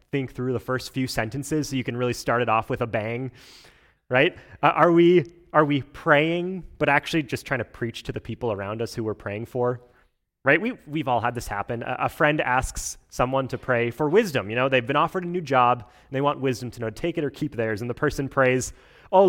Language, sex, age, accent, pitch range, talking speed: English, male, 30-49, American, 115-150 Hz, 245 wpm